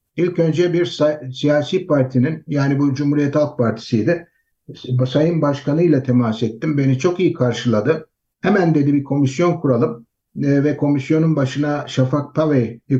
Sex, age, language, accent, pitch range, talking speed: male, 60-79, Turkish, native, 130-155 Hz, 135 wpm